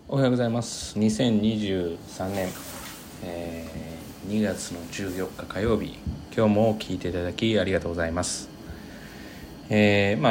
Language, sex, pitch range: Japanese, male, 90-115 Hz